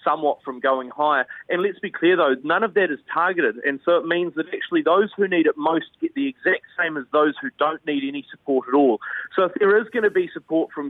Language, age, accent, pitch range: English, 30-49, Australian, 140-185 Hz